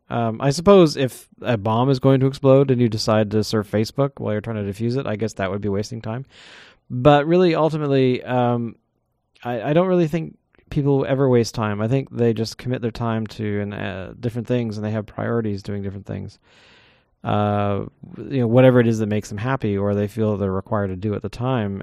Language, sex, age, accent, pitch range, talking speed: English, male, 30-49, American, 100-130 Hz, 225 wpm